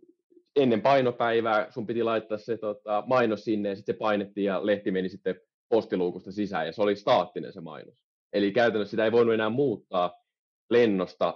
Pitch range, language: 100-125 Hz, Finnish